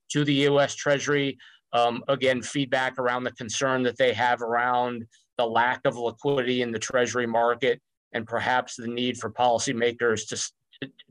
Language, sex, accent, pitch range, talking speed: English, male, American, 120-145 Hz, 155 wpm